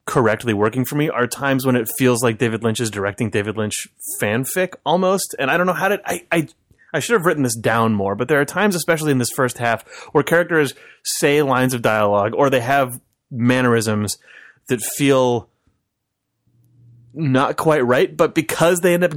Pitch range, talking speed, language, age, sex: 115-150 Hz, 195 wpm, English, 30-49, male